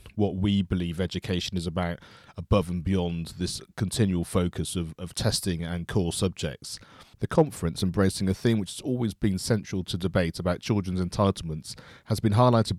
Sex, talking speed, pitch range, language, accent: male, 170 wpm, 90-105 Hz, English, British